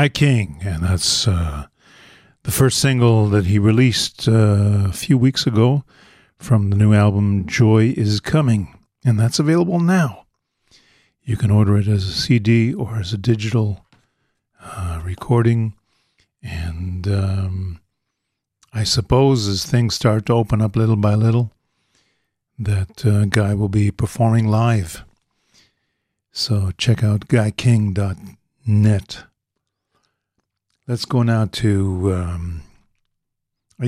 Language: English